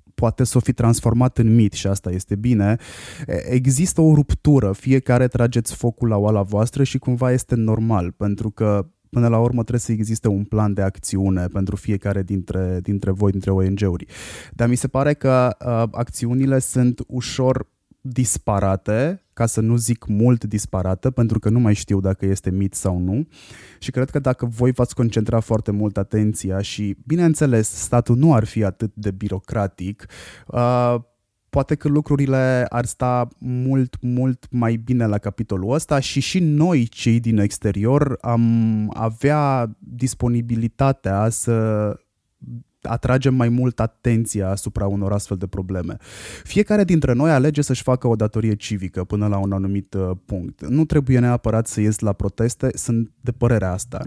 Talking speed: 160 wpm